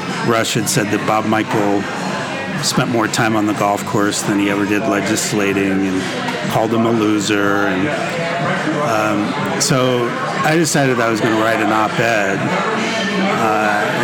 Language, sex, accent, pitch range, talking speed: English, male, American, 110-130 Hz, 155 wpm